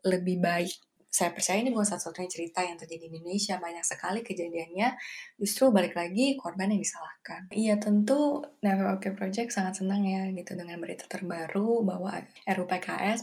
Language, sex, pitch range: Indonesian, female, 170-205 Hz